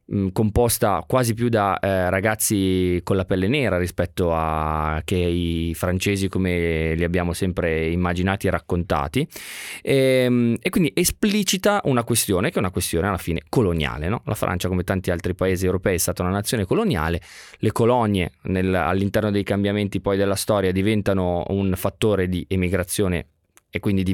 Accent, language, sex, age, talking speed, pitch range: native, Italian, male, 20-39, 155 wpm, 90-125 Hz